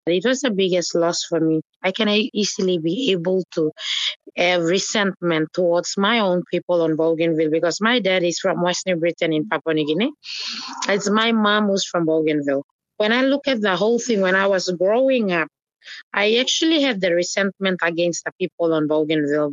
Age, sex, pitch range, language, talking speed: 30-49, female, 165-205 Hz, English, 185 wpm